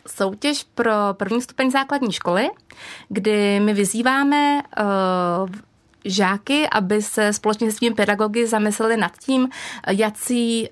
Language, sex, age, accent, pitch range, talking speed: Czech, female, 20-39, native, 200-235 Hz, 110 wpm